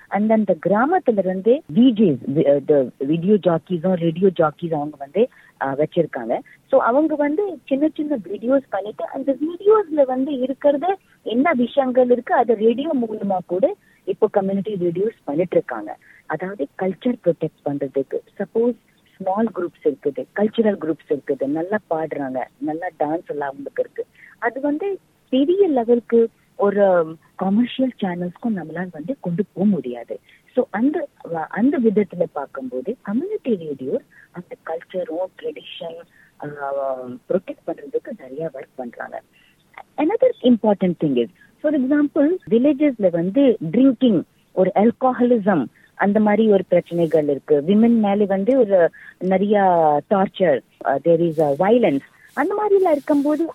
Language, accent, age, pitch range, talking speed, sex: Tamil, native, 30-49, 170-265 Hz, 110 wpm, female